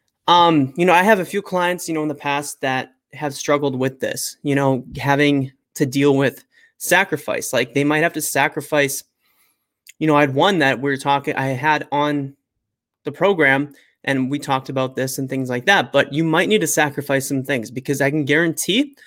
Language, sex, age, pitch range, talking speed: English, male, 20-39, 135-155 Hz, 205 wpm